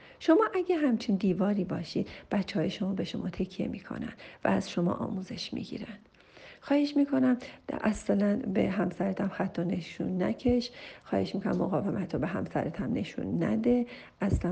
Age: 40-59